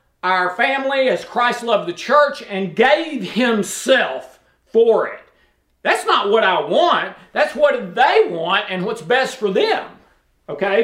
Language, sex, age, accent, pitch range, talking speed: English, male, 50-69, American, 190-255 Hz, 150 wpm